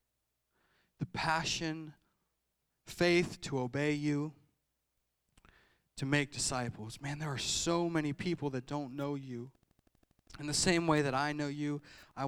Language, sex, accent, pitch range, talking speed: English, male, American, 105-140 Hz, 135 wpm